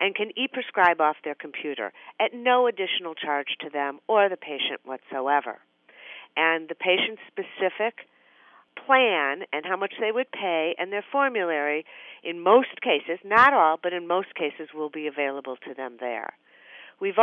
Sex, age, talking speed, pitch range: female, 50-69, 155 wpm, 160-225 Hz